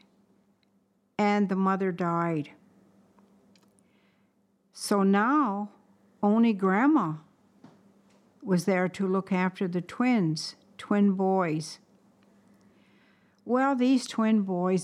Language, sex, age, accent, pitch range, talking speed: English, female, 60-79, American, 190-225 Hz, 85 wpm